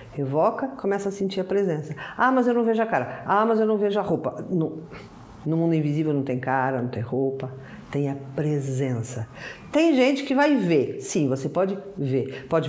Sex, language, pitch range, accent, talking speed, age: female, Portuguese, 145-200 Hz, Brazilian, 205 wpm, 50-69